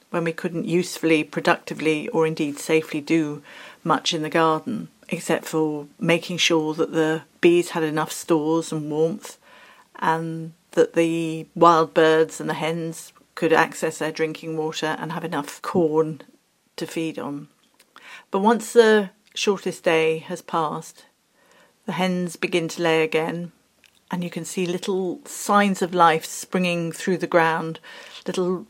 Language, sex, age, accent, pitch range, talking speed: English, female, 40-59, British, 160-180 Hz, 150 wpm